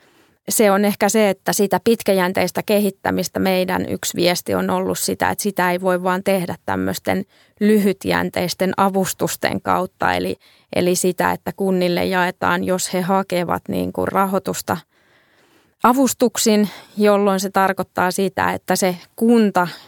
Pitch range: 165-195 Hz